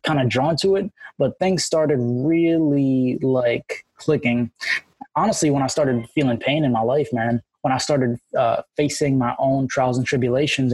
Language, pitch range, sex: English, 125-150 Hz, male